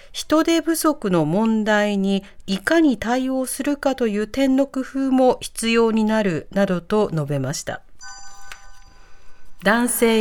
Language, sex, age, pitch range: Japanese, female, 40-59, 190-275 Hz